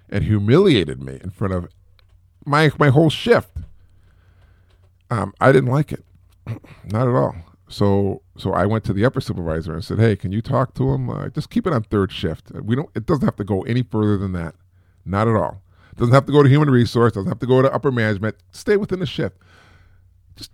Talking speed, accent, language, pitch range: 215 wpm, American, English, 90-120 Hz